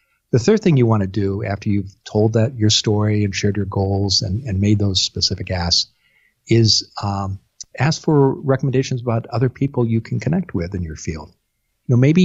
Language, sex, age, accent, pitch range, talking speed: English, male, 50-69, American, 100-130 Hz, 195 wpm